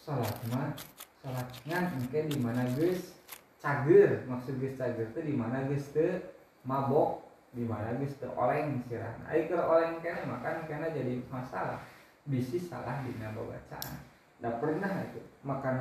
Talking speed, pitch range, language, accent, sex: 130 wpm, 120-155 Hz, Indonesian, native, male